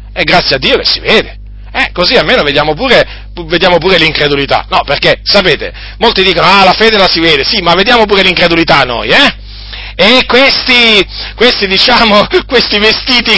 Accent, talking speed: native, 180 wpm